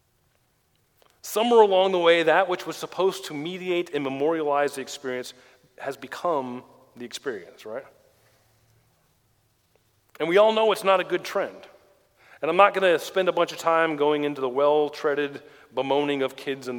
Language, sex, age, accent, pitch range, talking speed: English, male, 40-59, American, 125-175 Hz, 165 wpm